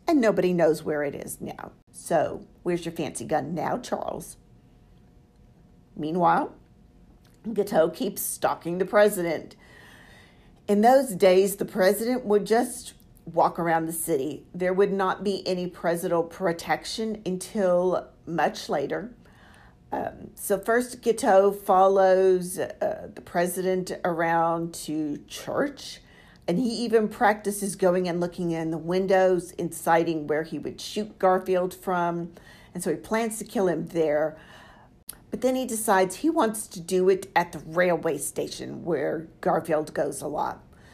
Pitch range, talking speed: 170-205 Hz, 140 wpm